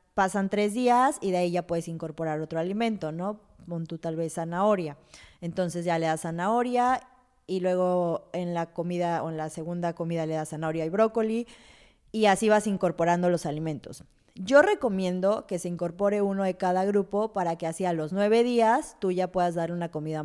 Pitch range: 170-205 Hz